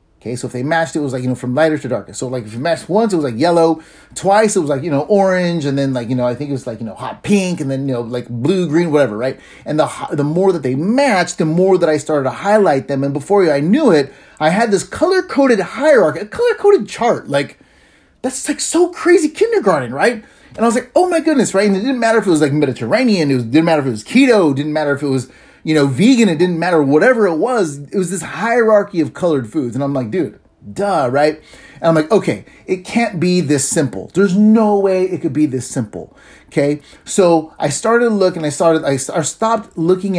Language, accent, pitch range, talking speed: English, American, 140-210 Hz, 255 wpm